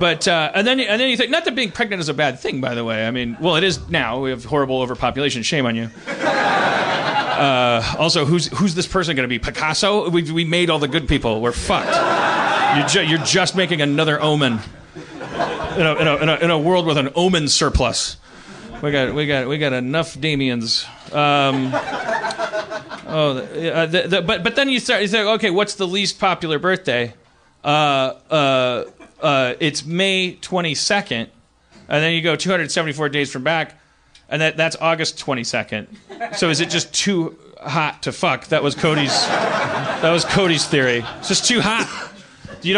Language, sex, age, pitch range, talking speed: English, male, 30-49, 130-180 Hz, 200 wpm